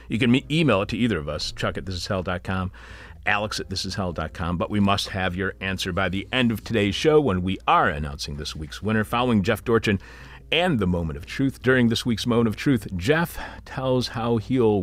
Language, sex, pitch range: English, male, 80-115 Hz